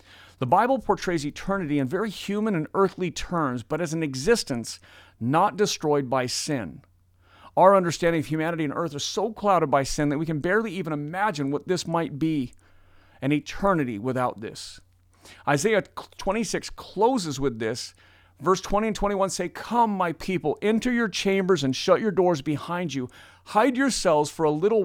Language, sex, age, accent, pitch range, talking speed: English, male, 40-59, American, 110-160 Hz, 170 wpm